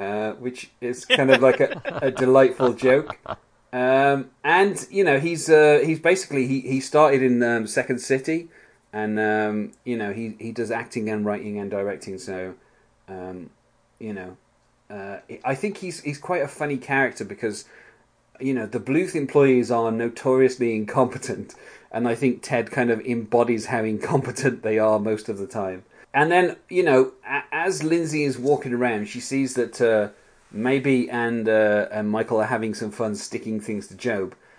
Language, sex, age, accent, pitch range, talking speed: English, male, 30-49, British, 110-140 Hz, 175 wpm